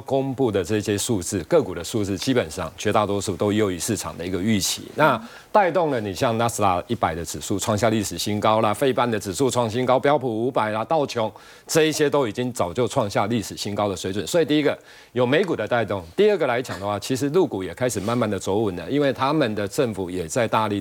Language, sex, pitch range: Chinese, male, 105-145 Hz